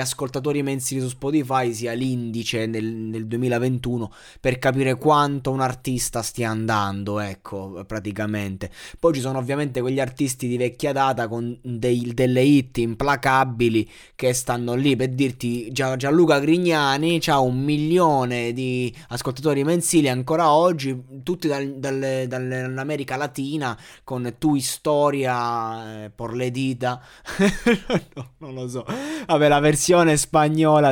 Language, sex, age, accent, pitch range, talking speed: Italian, male, 20-39, native, 120-145 Hz, 130 wpm